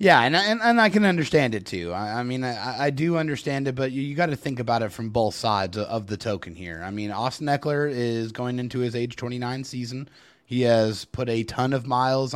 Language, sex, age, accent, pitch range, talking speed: English, male, 30-49, American, 120-140 Hz, 245 wpm